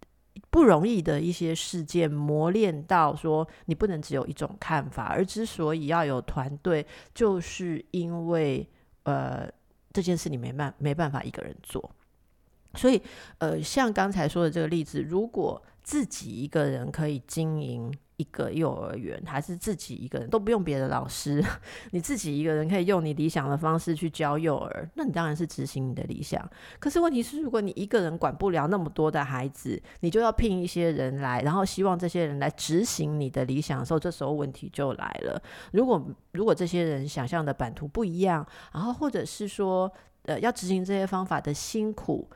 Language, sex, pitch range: Chinese, female, 150-195 Hz